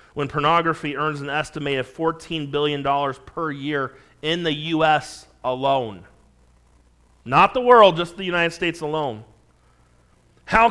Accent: American